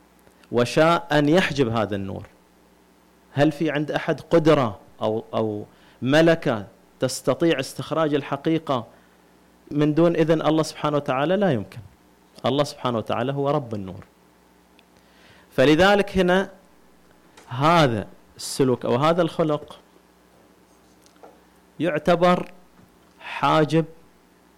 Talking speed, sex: 95 wpm, male